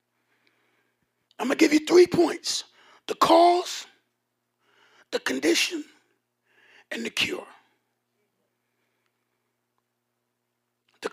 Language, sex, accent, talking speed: English, male, American, 80 wpm